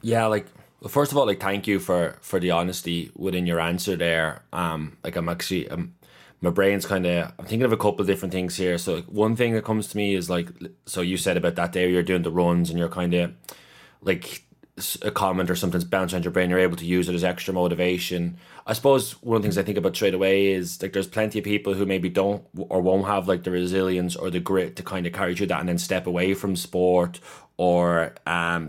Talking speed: 245 wpm